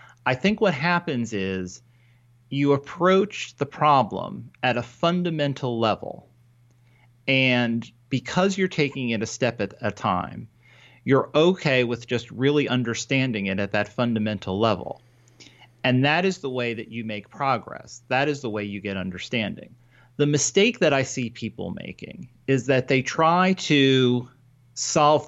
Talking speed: 150 wpm